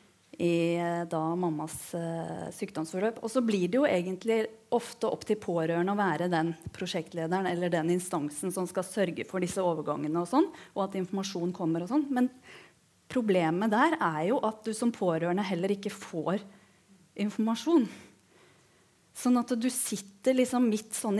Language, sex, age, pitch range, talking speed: English, female, 30-49, 175-220 Hz, 160 wpm